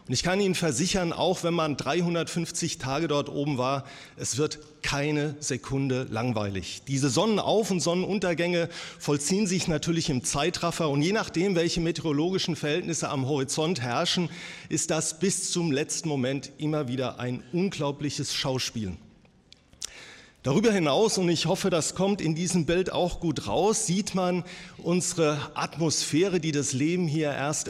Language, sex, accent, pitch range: German, male, German, 145-180 Hz